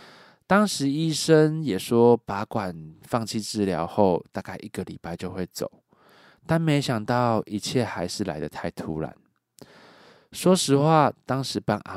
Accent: native